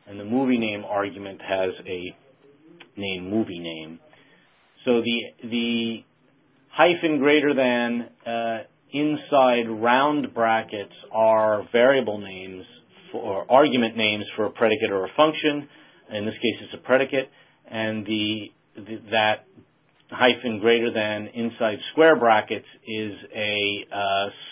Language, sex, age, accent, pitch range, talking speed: English, male, 40-59, American, 105-130 Hz, 125 wpm